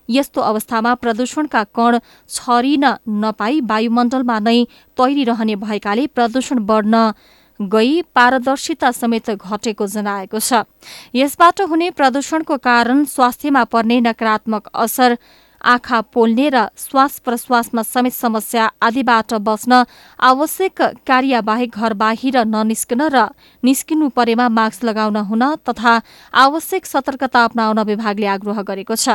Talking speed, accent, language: 90 wpm, Indian, English